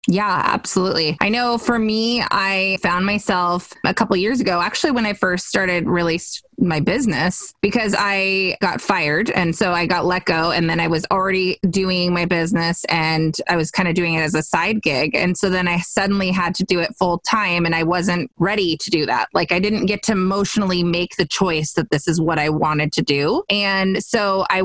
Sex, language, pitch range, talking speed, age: female, English, 170-205 Hz, 220 wpm, 20-39